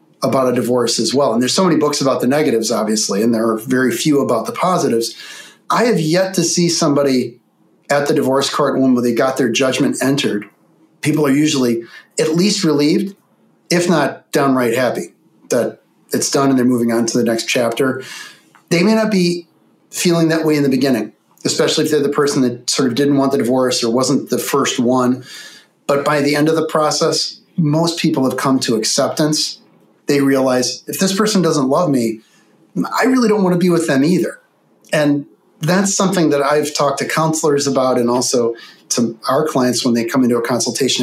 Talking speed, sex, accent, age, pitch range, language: 200 wpm, male, American, 40-59, 125-155 Hz, English